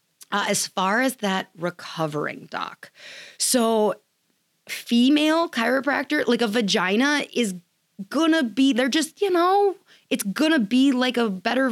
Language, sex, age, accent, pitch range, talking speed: English, female, 20-39, American, 180-255 Hz, 145 wpm